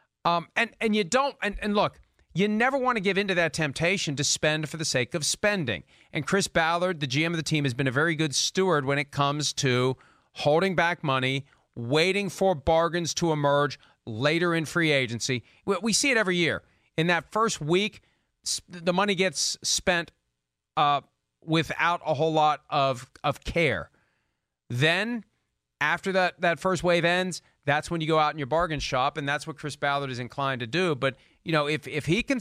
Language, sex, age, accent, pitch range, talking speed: English, male, 40-59, American, 145-190 Hz, 200 wpm